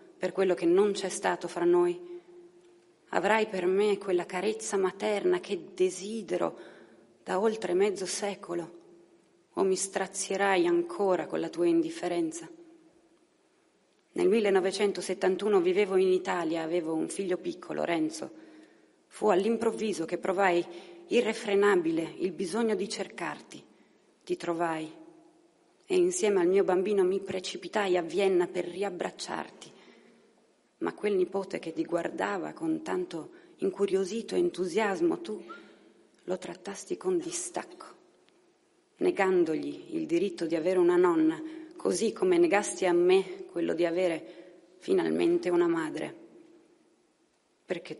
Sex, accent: female, native